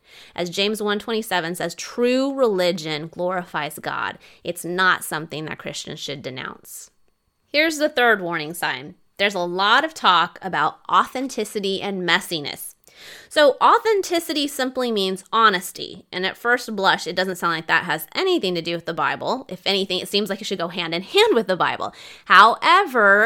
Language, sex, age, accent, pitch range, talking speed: English, female, 20-39, American, 175-250 Hz, 175 wpm